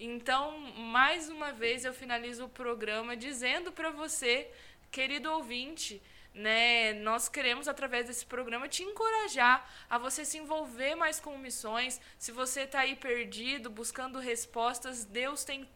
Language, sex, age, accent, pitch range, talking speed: Portuguese, female, 20-39, Brazilian, 235-280 Hz, 140 wpm